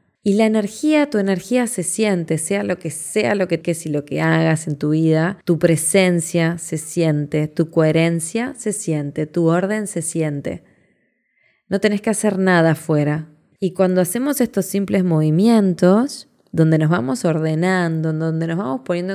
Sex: female